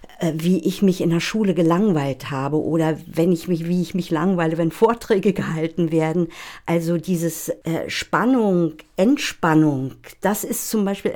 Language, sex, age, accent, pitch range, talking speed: German, female, 50-69, German, 165-195 Hz, 150 wpm